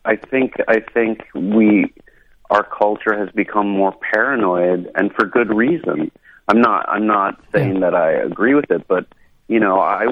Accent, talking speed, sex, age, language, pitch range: American, 170 wpm, male, 30-49, English, 85-105 Hz